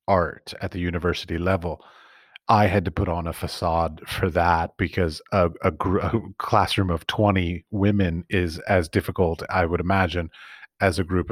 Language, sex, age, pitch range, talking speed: English, male, 30-49, 85-105 Hz, 165 wpm